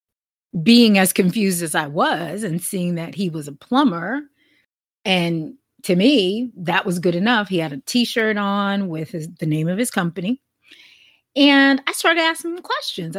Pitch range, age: 170-230 Hz, 30-49